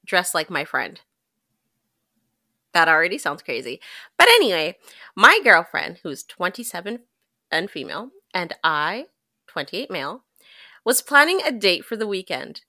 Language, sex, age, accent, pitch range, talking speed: English, female, 30-49, American, 175-250 Hz, 130 wpm